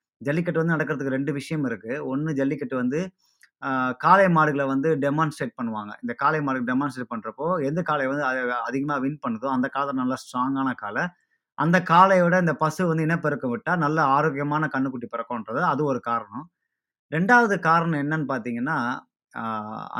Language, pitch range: Tamil, 130-165 Hz